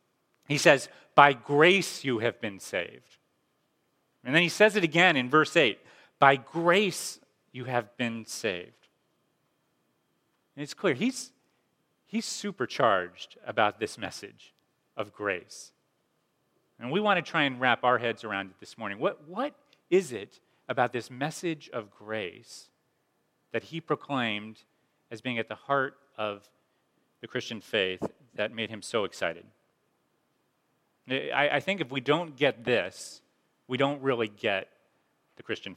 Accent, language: American, English